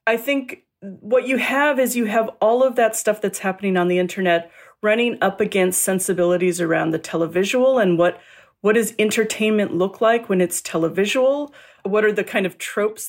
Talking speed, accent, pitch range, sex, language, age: 185 wpm, American, 180-245 Hz, female, English, 40-59